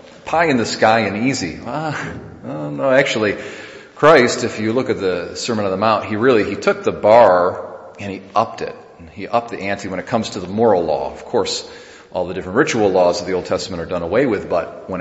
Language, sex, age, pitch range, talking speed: English, male, 40-59, 90-105 Hz, 230 wpm